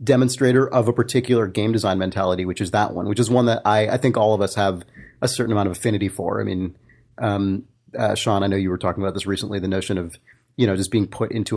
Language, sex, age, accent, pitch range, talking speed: English, male, 30-49, American, 105-135 Hz, 260 wpm